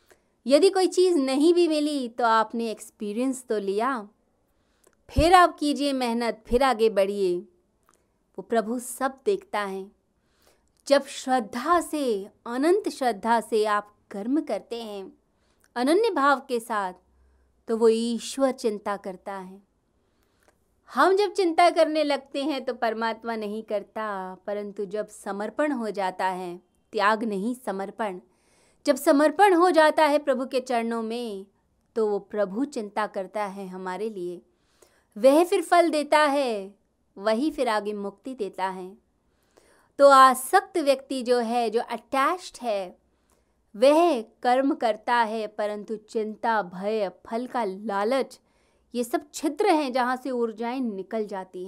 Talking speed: 135 wpm